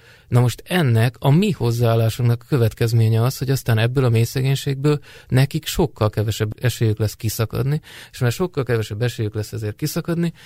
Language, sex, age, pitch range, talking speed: Hungarian, male, 20-39, 110-125 Hz, 160 wpm